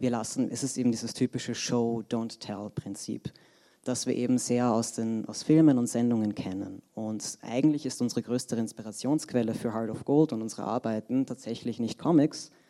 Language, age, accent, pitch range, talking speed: German, 30-49, German, 115-130 Hz, 170 wpm